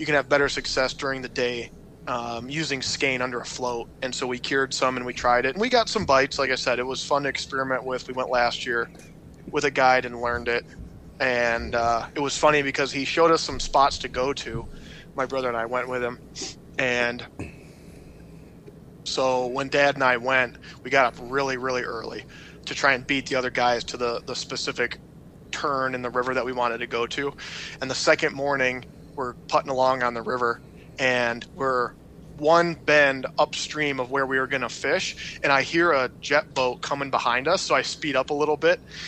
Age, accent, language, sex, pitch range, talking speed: 20-39, American, English, male, 125-145 Hz, 215 wpm